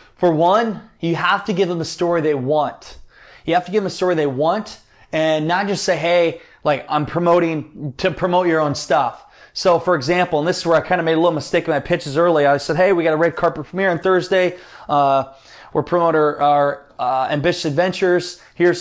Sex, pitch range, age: male, 145-180 Hz, 20-39